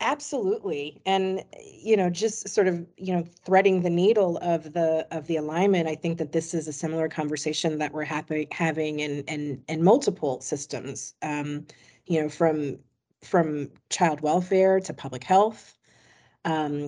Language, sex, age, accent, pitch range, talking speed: English, female, 40-59, American, 155-180 Hz, 165 wpm